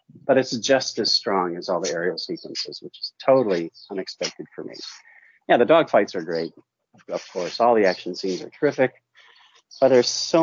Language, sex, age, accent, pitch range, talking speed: English, male, 40-59, American, 100-165 Hz, 185 wpm